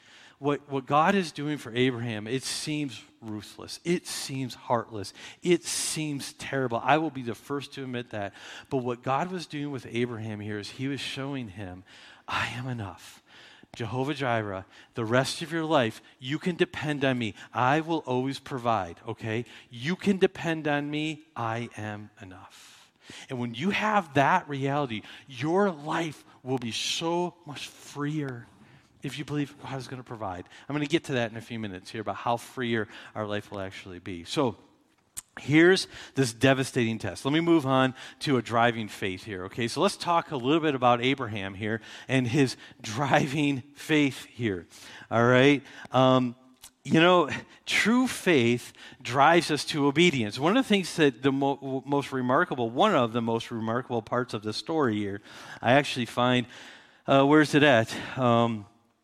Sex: male